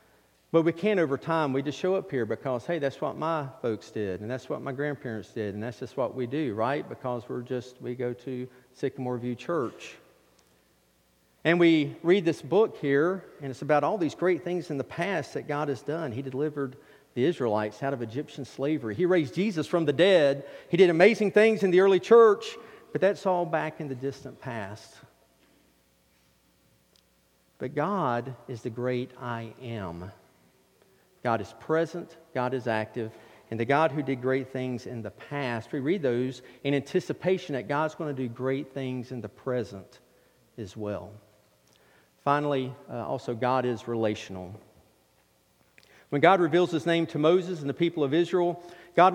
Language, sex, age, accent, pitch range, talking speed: English, male, 50-69, American, 115-160 Hz, 180 wpm